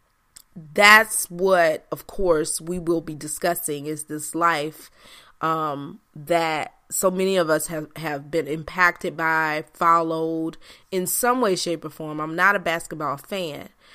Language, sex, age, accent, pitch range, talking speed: English, female, 30-49, American, 155-180 Hz, 145 wpm